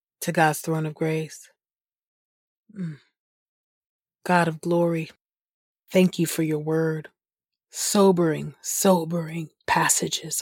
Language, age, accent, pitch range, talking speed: English, 30-49, American, 160-185 Hz, 90 wpm